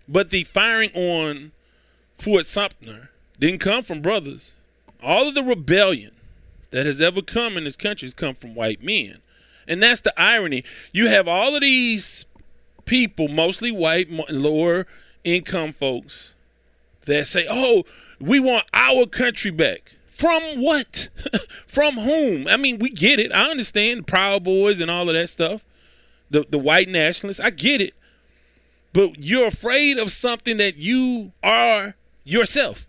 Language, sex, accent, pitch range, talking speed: English, male, American, 140-220 Hz, 155 wpm